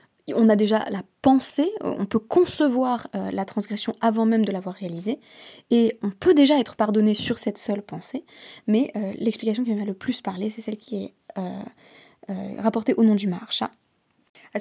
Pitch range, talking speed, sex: 205-245 Hz, 190 wpm, female